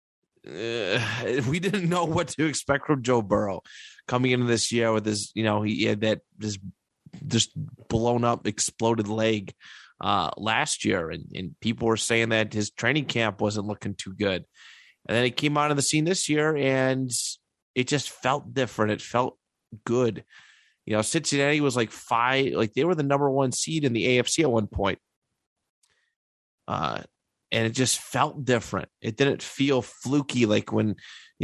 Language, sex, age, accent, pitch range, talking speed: English, male, 30-49, American, 110-130 Hz, 180 wpm